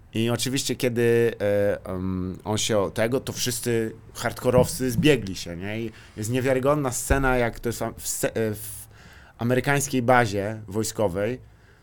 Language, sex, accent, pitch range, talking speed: Polish, male, native, 105-130 Hz, 130 wpm